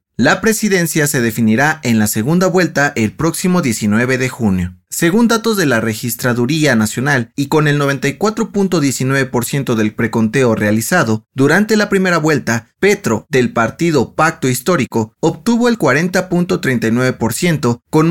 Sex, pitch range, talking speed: male, 120-175 Hz, 130 wpm